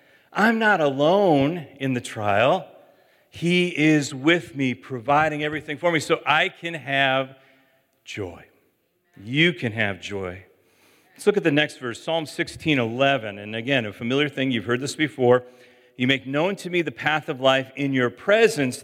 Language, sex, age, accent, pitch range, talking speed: English, male, 40-59, American, 115-145 Hz, 165 wpm